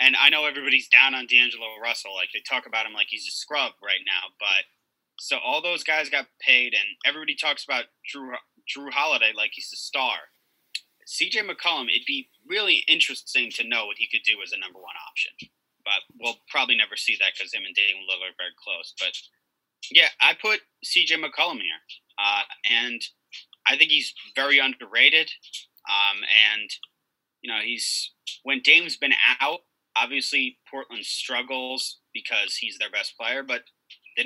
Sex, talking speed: male, 175 wpm